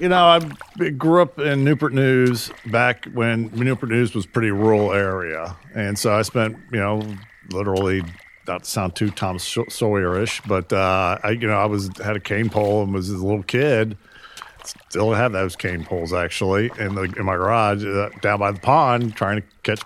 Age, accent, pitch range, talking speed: 40-59, American, 100-115 Hz, 200 wpm